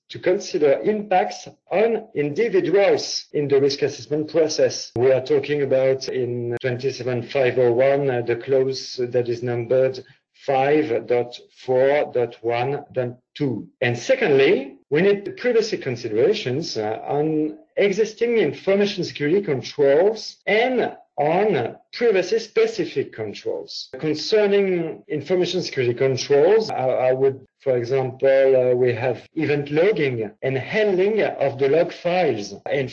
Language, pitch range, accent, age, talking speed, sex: English, 130-205 Hz, French, 50-69, 105 wpm, male